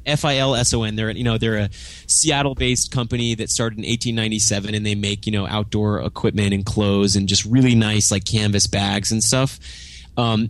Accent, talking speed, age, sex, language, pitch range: American, 175 wpm, 30-49, male, English, 100-120 Hz